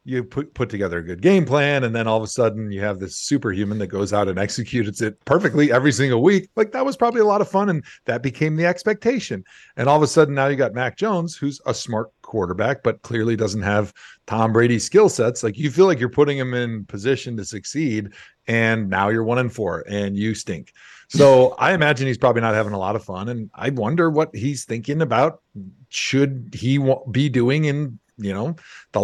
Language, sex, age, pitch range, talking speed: English, male, 40-59, 110-150 Hz, 225 wpm